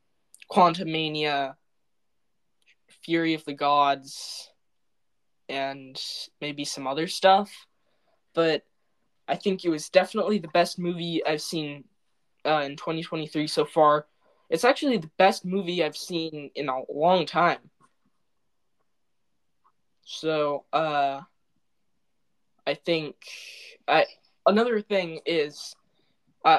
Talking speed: 105 wpm